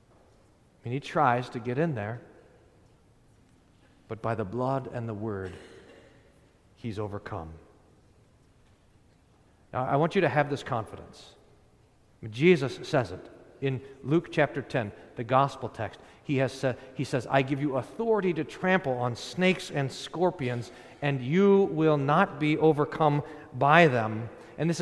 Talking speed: 145 wpm